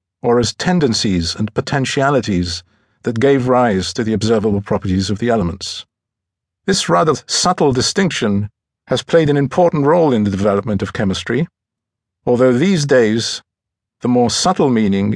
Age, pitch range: 50-69, 105-135 Hz